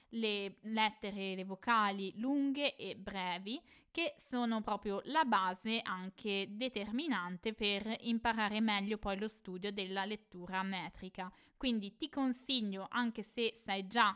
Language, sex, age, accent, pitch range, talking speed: Italian, female, 20-39, native, 195-240 Hz, 125 wpm